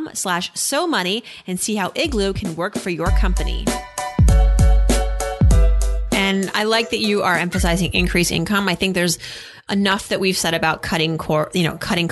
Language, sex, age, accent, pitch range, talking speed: English, female, 30-49, American, 165-215 Hz, 170 wpm